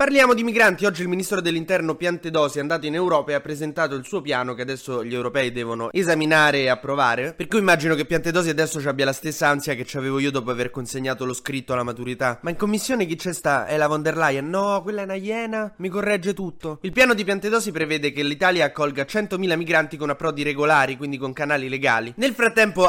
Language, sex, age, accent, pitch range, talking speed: Italian, male, 20-39, native, 140-185 Hz, 225 wpm